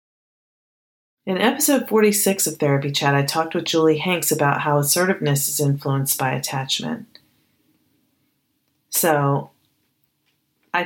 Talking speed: 110 wpm